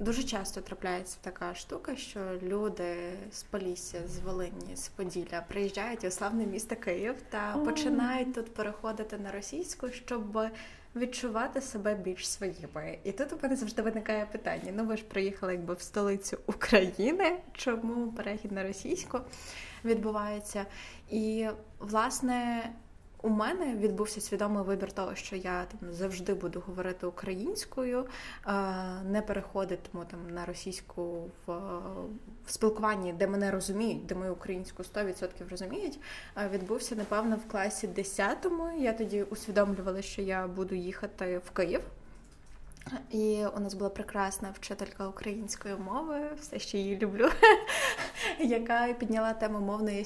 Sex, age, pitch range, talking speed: female, 20-39, 190-230 Hz, 130 wpm